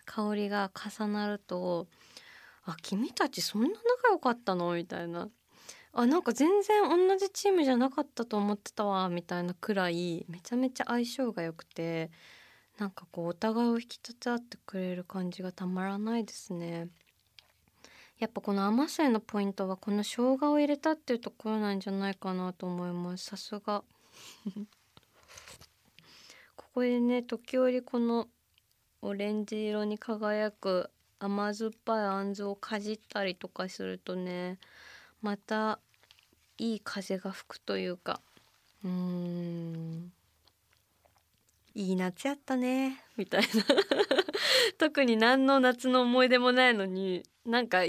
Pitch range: 180-235 Hz